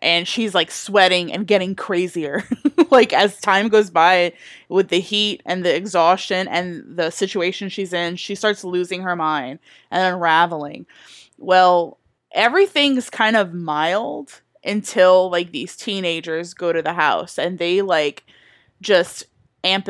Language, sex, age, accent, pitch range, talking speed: English, female, 20-39, American, 175-210 Hz, 145 wpm